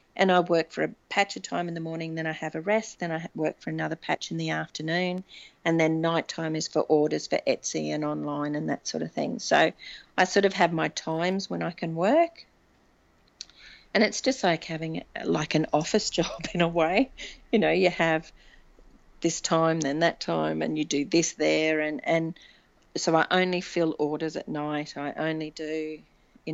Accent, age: Australian, 40-59